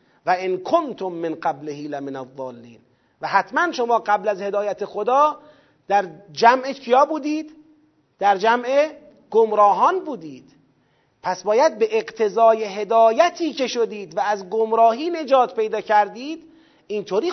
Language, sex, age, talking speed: Persian, male, 40-59, 125 wpm